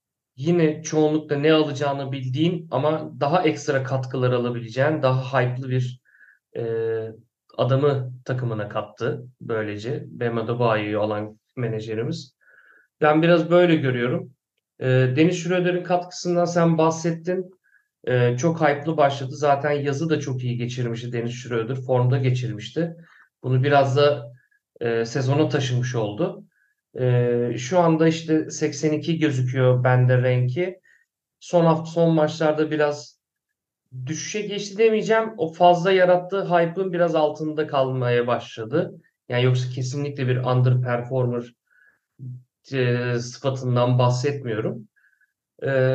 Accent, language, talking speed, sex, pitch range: native, Turkish, 110 wpm, male, 125-170 Hz